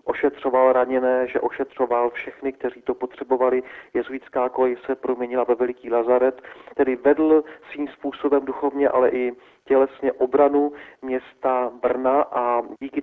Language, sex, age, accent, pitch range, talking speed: Czech, male, 40-59, native, 120-135 Hz, 130 wpm